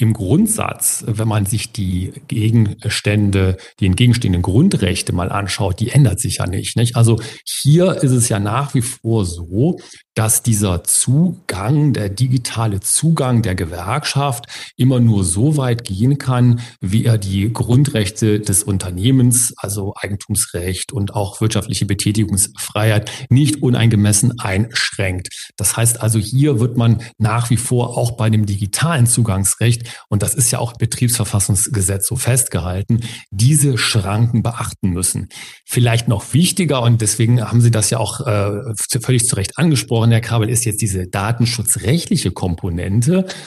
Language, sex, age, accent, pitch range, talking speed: German, male, 40-59, German, 105-125 Hz, 145 wpm